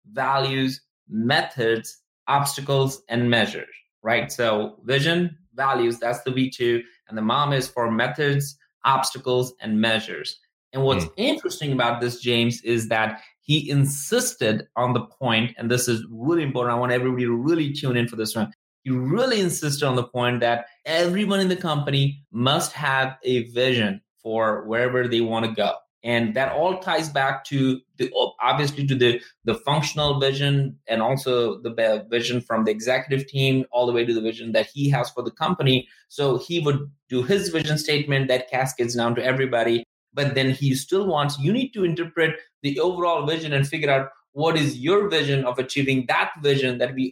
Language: English